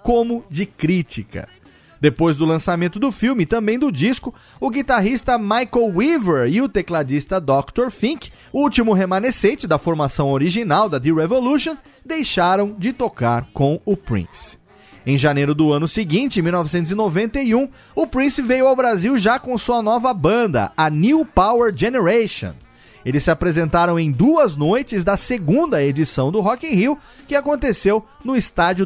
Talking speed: 150 wpm